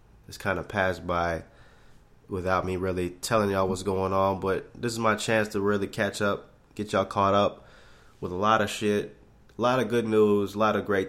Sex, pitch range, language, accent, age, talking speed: male, 95-115 Hz, English, American, 20-39, 215 wpm